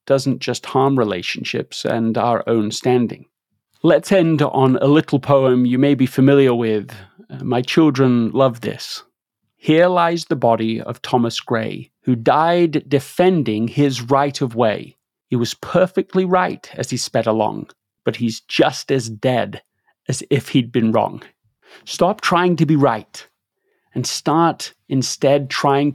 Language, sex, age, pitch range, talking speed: English, male, 30-49, 125-160 Hz, 150 wpm